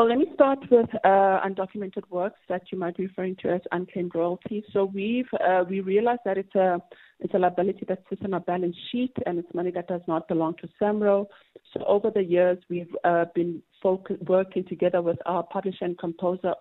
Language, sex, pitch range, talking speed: English, female, 170-195 Hz, 210 wpm